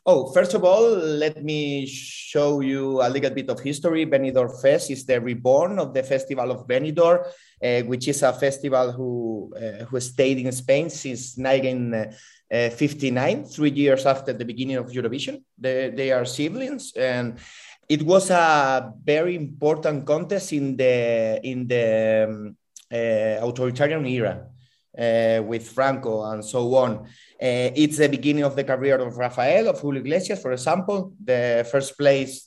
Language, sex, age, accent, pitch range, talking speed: English, male, 30-49, Spanish, 125-150 Hz, 155 wpm